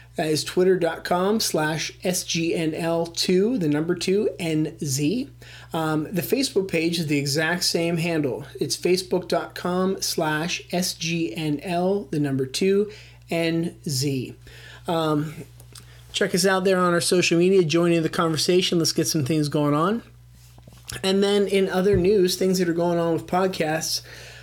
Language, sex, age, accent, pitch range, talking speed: English, male, 30-49, American, 145-180 Hz, 135 wpm